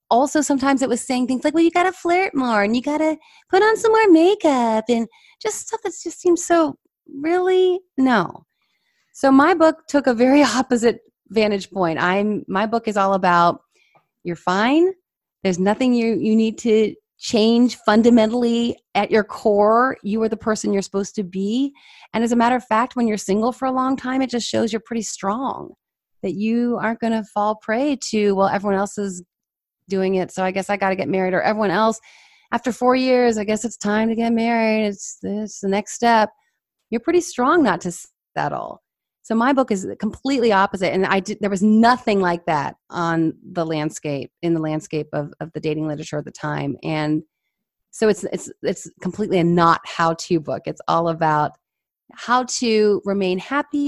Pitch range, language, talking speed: 195-255 Hz, English, 195 wpm